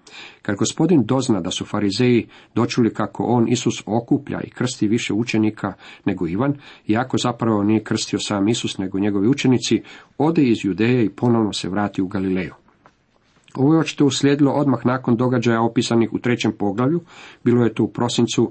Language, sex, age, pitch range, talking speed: Croatian, male, 50-69, 105-130 Hz, 165 wpm